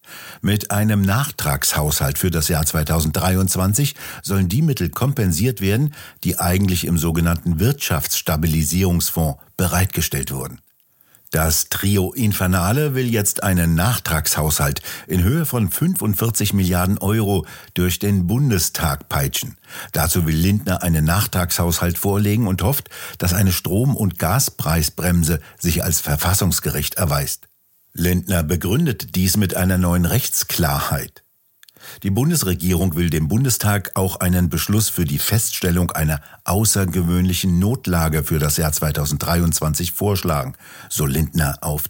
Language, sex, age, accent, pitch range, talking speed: German, male, 60-79, German, 85-105 Hz, 115 wpm